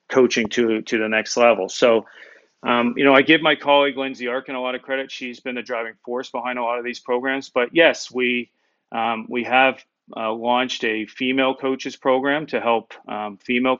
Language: English